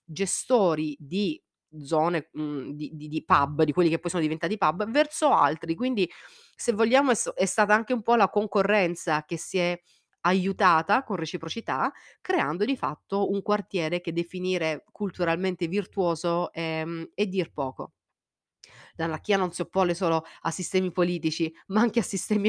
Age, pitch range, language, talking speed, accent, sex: 30-49, 155-200 Hz, Italian, 155 wpm, native, female